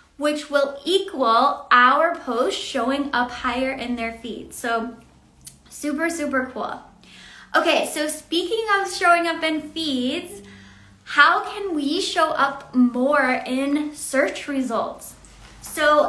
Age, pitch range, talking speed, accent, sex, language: 10-29, 255-315 Hz, 125 wpm, American, female, English